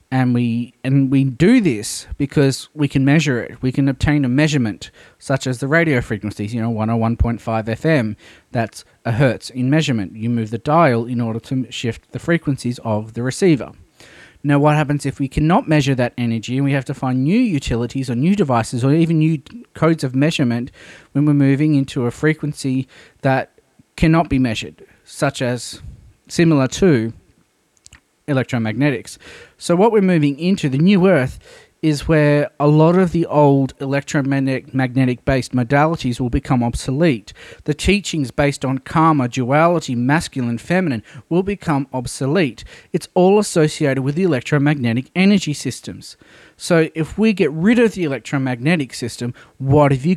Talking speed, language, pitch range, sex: 165 wpm, English, 125-160 Hz, male